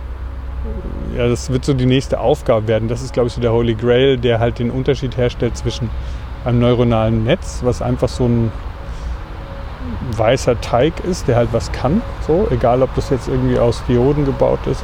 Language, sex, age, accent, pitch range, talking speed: German, male, 30-49, German, 90-125 Hz, 185 wpm